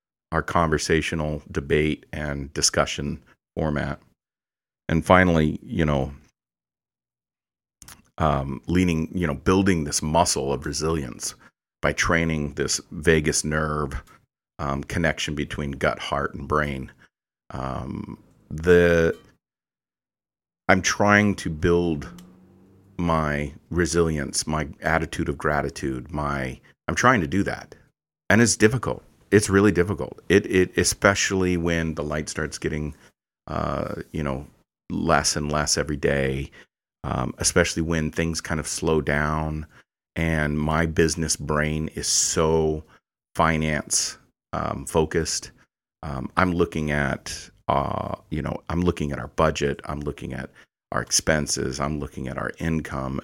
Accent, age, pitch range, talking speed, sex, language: American, 40-59, 75-85 Hz, 125 wpm, male, English